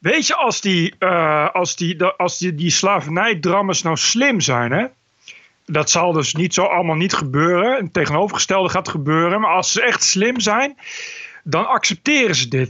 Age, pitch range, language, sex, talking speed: 40-59, 165-215 Hz, Dutch, male, 175 wpm